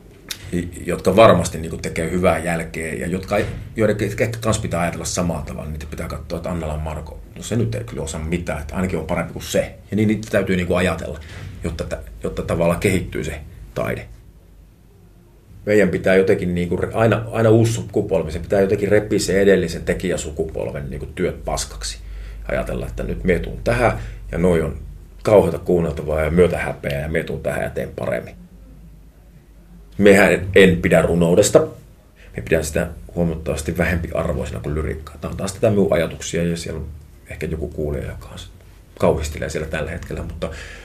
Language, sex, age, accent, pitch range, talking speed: Finnish, male, 30-49, native, 80-95 Hz, 160 wpm